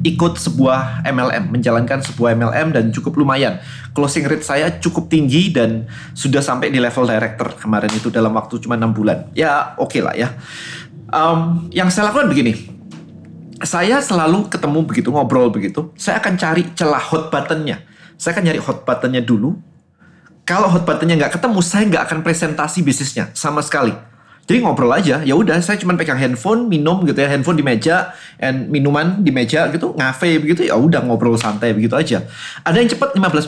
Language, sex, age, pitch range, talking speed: Indonesian, male, 30-49, 125-170 Hz, 175 wpm